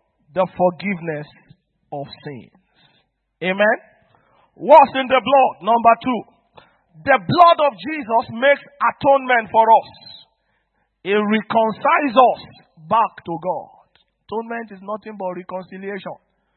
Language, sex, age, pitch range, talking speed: English, male, 50-69, 185-235 Hz, 110 wpm